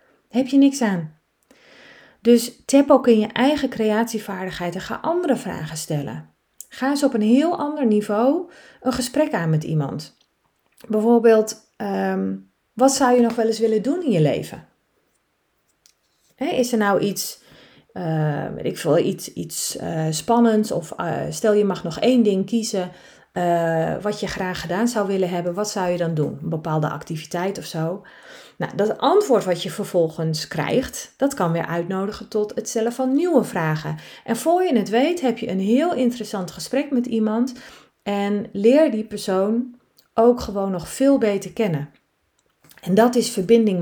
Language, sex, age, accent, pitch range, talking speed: Dutch, female, 30-49, Dutch, 180-235 Hz, 170 wpm